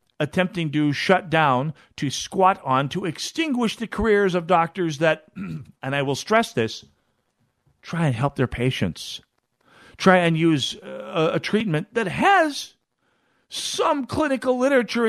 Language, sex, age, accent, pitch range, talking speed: English, male, 50-69, American, 130-215 Hz, 140 wpm